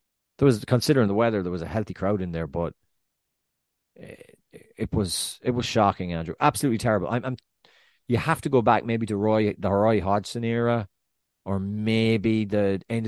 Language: English